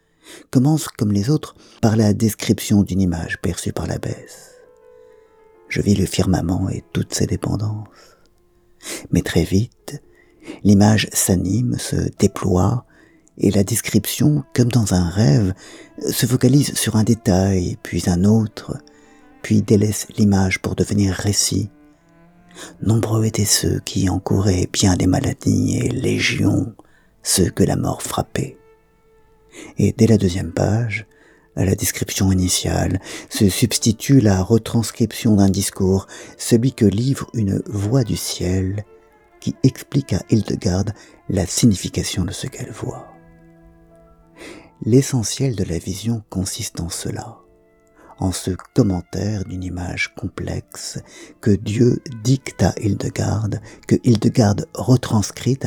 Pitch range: 95-125 Hz